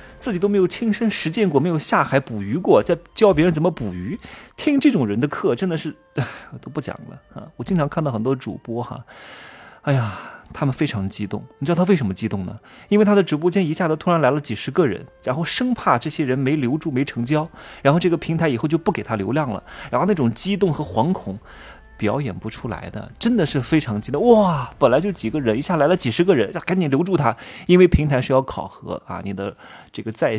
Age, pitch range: 30-49, 115-170 Hz